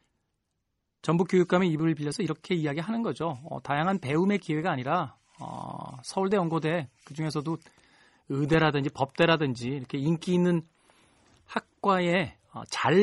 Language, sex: Korean, male